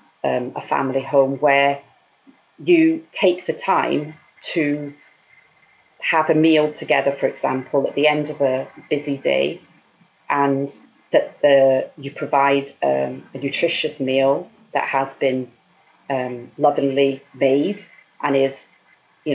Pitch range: 135-150 Hz